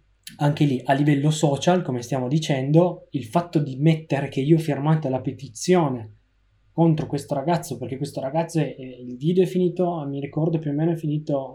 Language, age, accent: Italian, 20-39, native